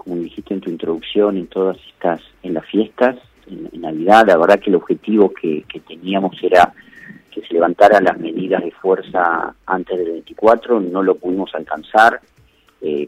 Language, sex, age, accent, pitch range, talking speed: Spanish, male, 40-59, Argentinian, 90-125 Hz, 175 wpm